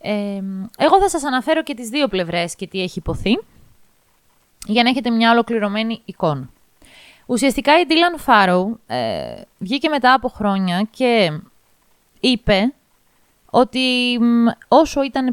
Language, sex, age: Greek, female, 20-39